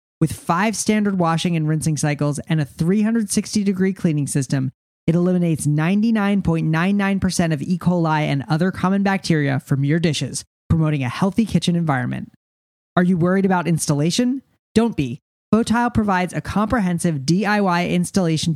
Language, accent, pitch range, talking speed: English, American, 155-195 Hz, 140 wpm